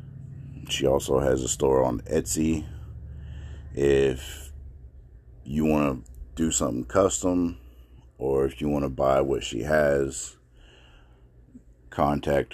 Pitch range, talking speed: 65-80 Hz, 115 wpm